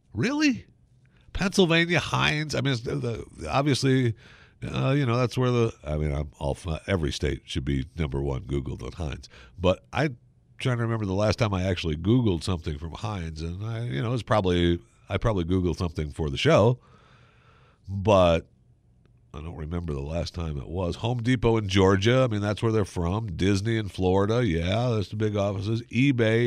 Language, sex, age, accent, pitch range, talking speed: English, male, 50-69, American, 85-125 Hz, 185 wpm